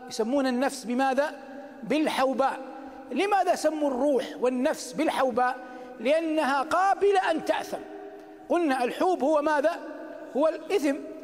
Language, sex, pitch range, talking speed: Arabic, male, 250-315 Hz, 100 wpm